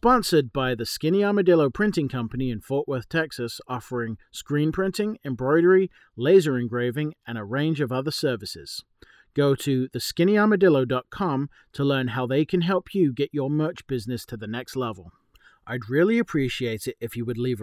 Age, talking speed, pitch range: 40-59, 165 wpm, 120-160 Hz